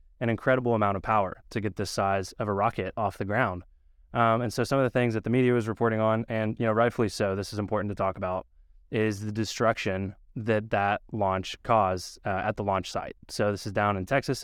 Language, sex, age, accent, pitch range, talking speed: English, male, 20-39, American, 95-110 Hz, 235 wpm